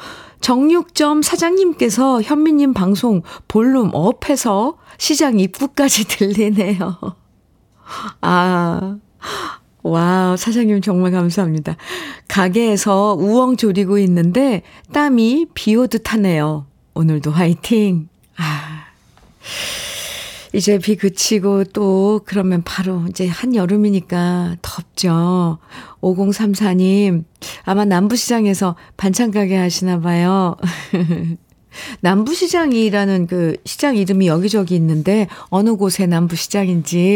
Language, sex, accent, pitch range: Korean, female, native, 180-280 Hz